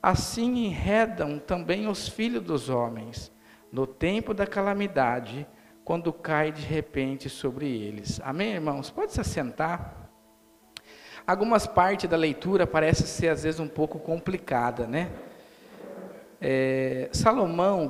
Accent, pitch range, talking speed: Brazilian, 130-195 Hz, 115 wpm